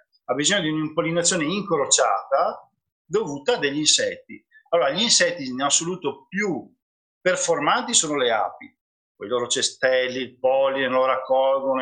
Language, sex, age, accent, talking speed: Italian, male, 40-59, native, 135 wpm